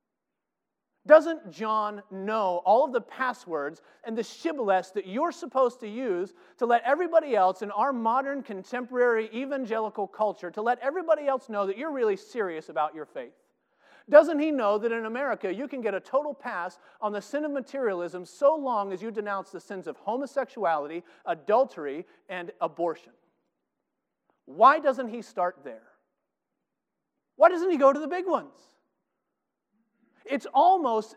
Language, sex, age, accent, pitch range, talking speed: English, male, 40-59, American, 195-270 Hz, 155 wpm